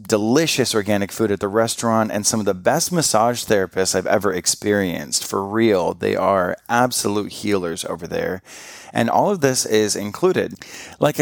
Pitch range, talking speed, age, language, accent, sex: 100-120 Hz, 165 wpm, 30-49, English, American, male